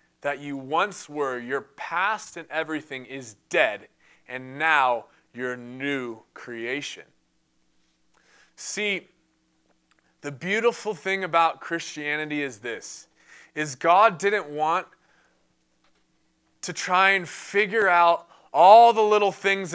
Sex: male